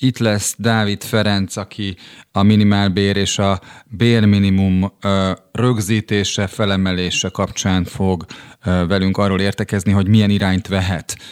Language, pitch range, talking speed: Hungarian, 95-105 Hz, 110 wpm